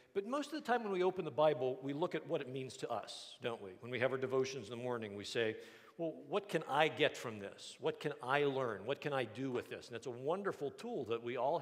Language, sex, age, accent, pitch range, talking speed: English, male, 50-69, American, 125-165 Hz, 285 wpm